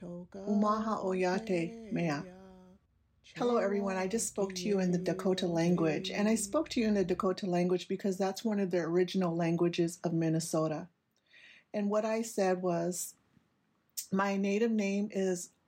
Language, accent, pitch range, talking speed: English, American, 170-200 Hz, 155 wpm